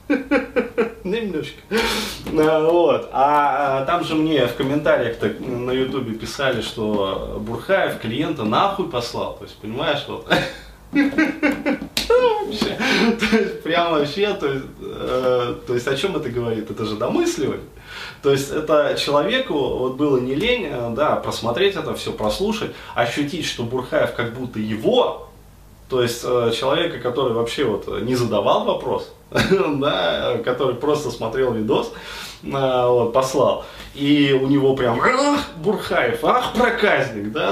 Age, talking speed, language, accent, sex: 20-39, 110 wpm, Russian, native, male